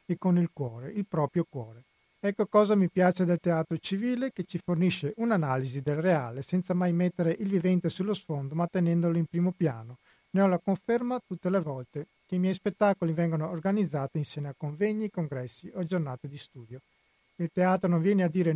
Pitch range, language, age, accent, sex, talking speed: 150-185 Hz, Italian, 40-59, native, male, 190 wpm